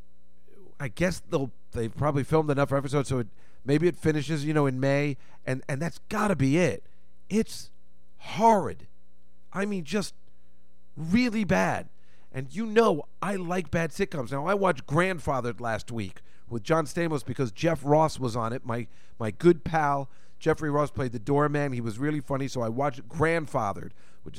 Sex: male